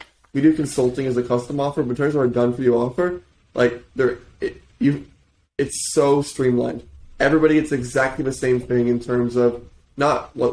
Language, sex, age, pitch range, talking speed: English, male, 20-39, 120-125 Hz, 195 wpm